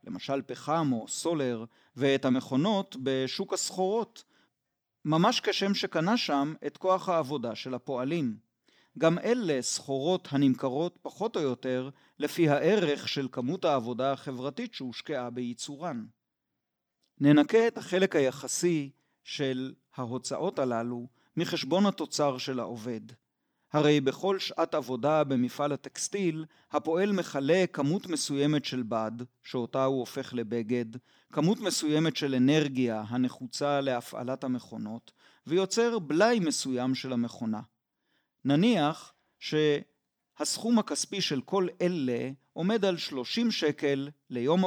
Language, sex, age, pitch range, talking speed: Hebrew, male, 40-59, 130-170 Hz, 110 wpm